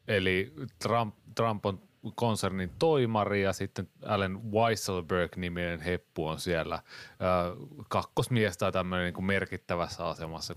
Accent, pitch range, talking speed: native, 90-110 Hz, 110 wpm